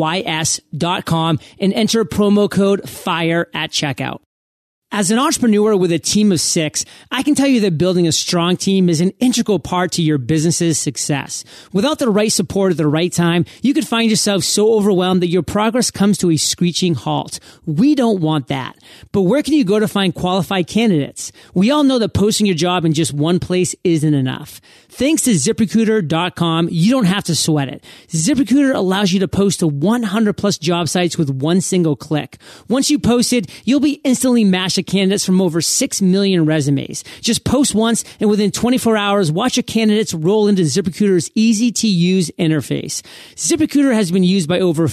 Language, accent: English, American